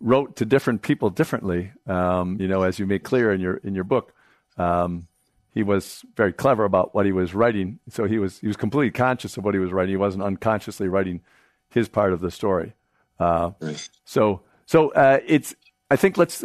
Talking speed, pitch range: 205 wpm, 100-125 Hz